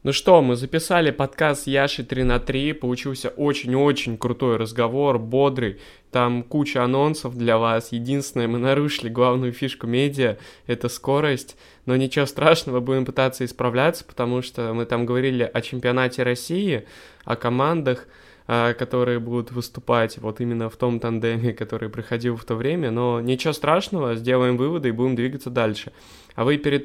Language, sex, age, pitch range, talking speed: Russian, male, 20-39, 120-145 Hz, 150 wpm